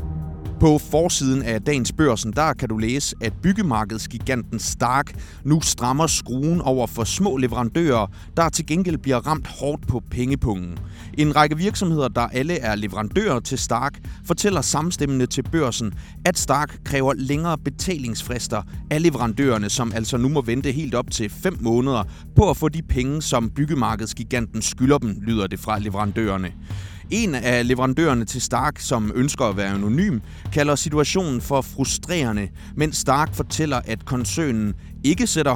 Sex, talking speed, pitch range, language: male, 155 wpm, 110-150 Hz, Danish